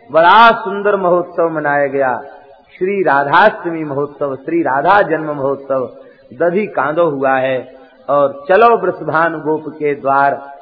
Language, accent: Hindi, native